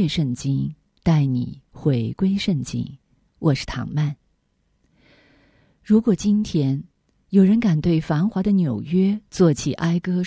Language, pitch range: Chinese, 135-195 Hz